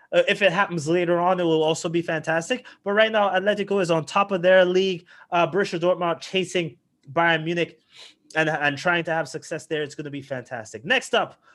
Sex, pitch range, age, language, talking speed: male, 140-170 Hz, 20-39, English, 210 wpm